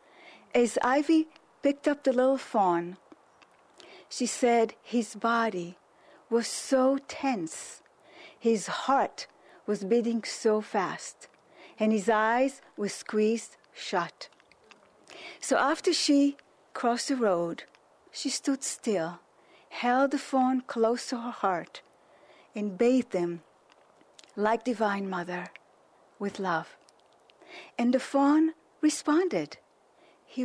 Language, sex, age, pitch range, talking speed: English, female, 40-59, 215-270 Hz, 110 wpm